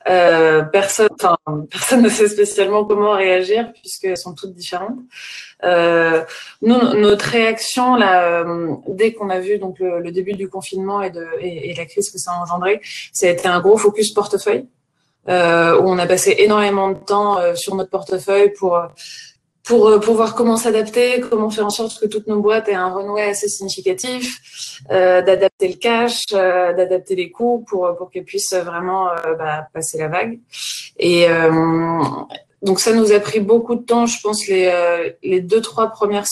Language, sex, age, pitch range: French, female, 20-39, 180-215 Hz